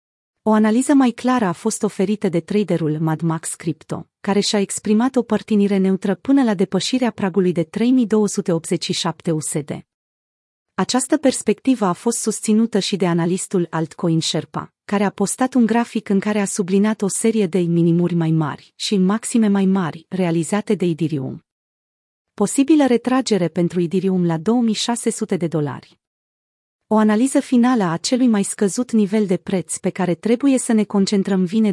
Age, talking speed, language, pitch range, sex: 30-49, 155 wpm, Romanian, 175-220 Hz, female